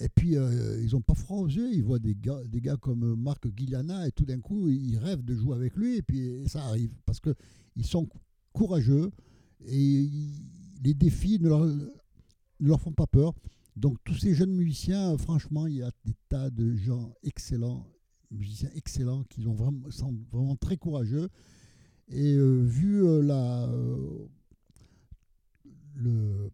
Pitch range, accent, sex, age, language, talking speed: 110-145 Hz, French, male, 60-79, French, 180 wpm